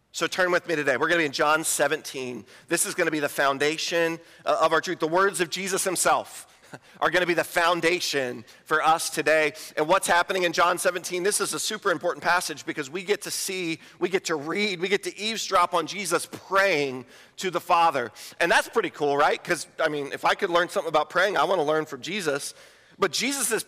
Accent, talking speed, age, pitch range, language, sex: American, 230 wpm, 40-59, 165-215 Hz, English, male